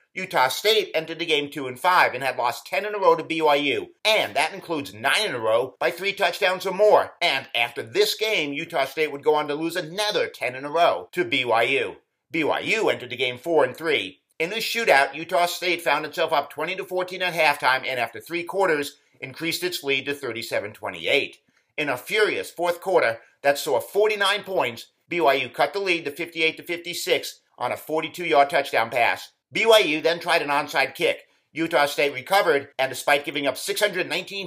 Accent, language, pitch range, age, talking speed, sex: American, English, 140-195 Hz, 50-69, 185 wpm, male